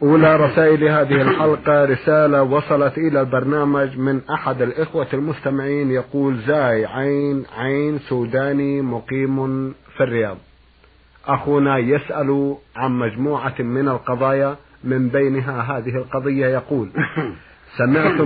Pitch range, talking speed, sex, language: 130-145 Hz, 105 wpm, male, Arabic